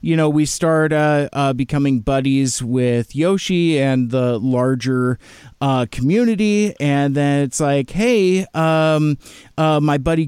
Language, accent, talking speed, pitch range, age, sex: English, American, 140 wpm, 135-165 Hz, 40-59, male